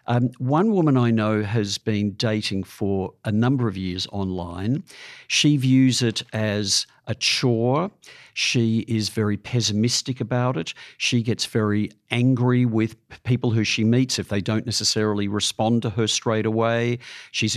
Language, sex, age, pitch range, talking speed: English, male, 50-69, 105-125 Hz, 155 wpm